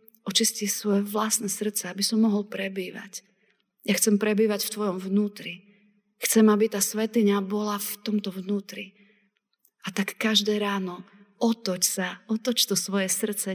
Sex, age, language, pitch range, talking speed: female, 30-49, Slovak, 180-210 Hz, 140 wpm